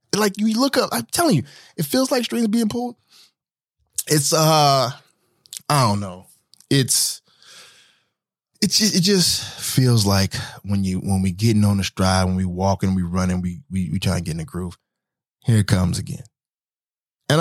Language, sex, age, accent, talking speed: English, male, 20-39, American, 185 wpm